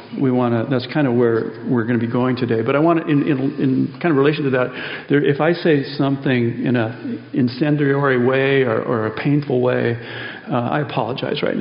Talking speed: 210 wpm